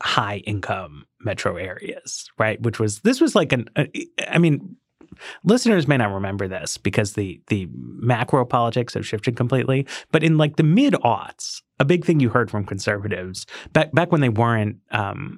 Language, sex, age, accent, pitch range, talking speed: English, male, 30-49, American, 105-155 Hz, 180 wpm